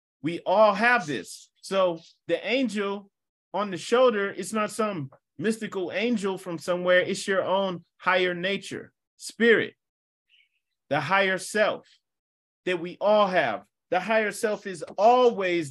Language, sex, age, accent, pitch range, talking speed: English, male, 30-49, American, 170-220 Hz, 135 wpm